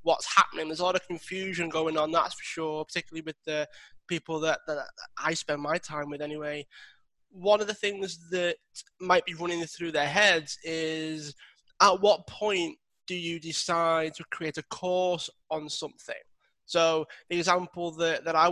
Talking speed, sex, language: 175 wpm, male, English